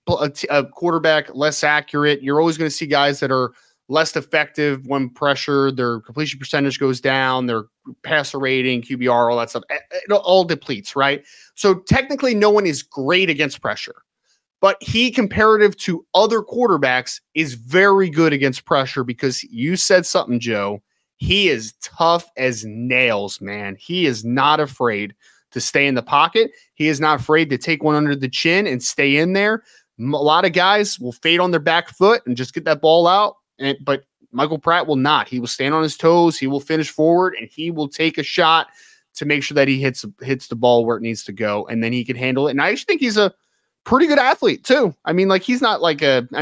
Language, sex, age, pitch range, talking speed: English, male, 20-39, 130-170 Hz, 205 wpm